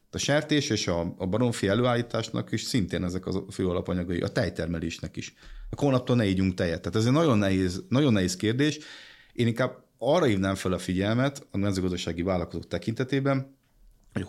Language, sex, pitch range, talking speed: Hungarian, male, 90-120 Hz, 175 wpm